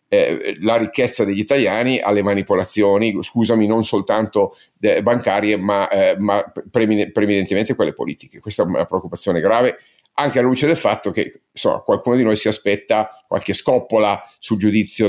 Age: 50-69